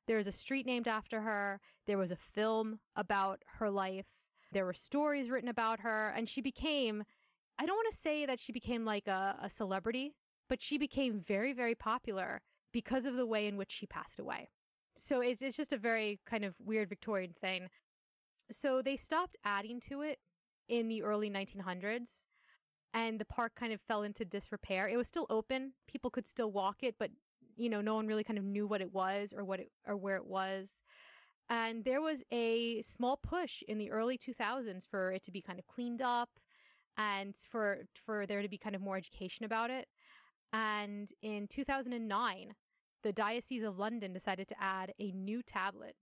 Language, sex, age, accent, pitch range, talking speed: English, female, 20-39, American, 200-245 Hz, 195 wpm